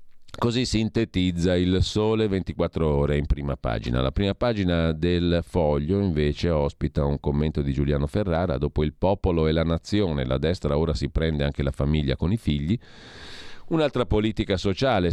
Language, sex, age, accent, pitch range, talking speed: Italian, male, 40-59, native, 80-110 Hz, 165 wpm